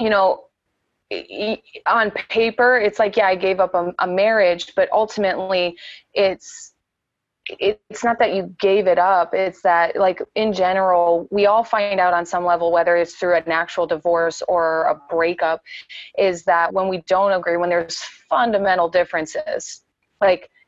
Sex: female